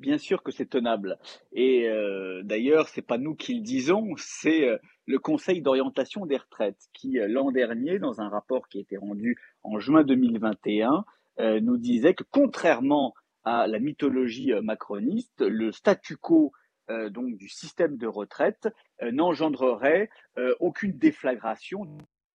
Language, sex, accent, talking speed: French, male, French, 150 wpm